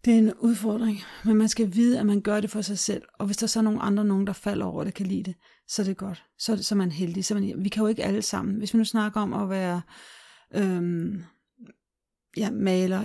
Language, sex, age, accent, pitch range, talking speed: Danish, female, 40-59, native, 180-210 Hz, 235 wpm